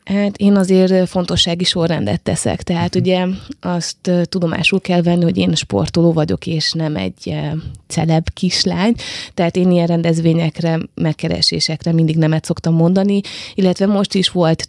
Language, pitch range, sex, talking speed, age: Hungarian, 165-190 Hz, female, 145 wpm, 20-39